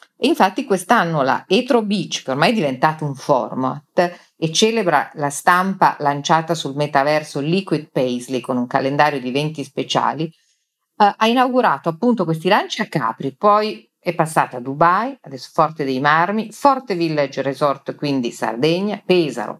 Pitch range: 140-200 Hz